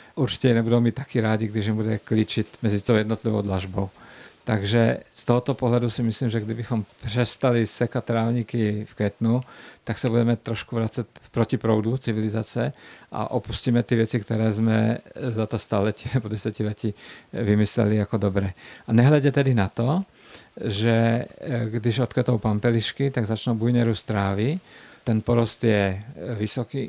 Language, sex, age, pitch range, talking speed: Czech, male, 50-69, 110-120 Hz, 145 wpm